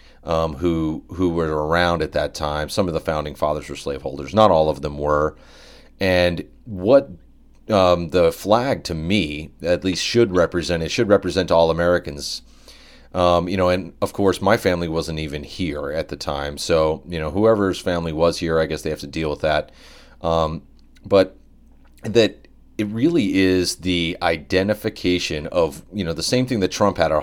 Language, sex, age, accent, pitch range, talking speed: English, male, 30-49, American, 80-90 Hz, 185 wpm